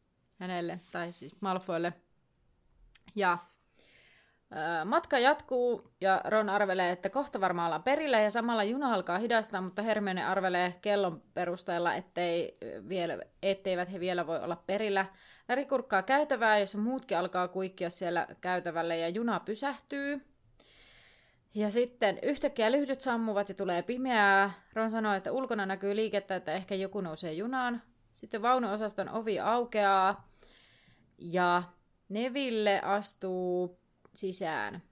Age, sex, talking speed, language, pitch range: 30-49, female, 125 wpm, Finnish, 185-225 Hz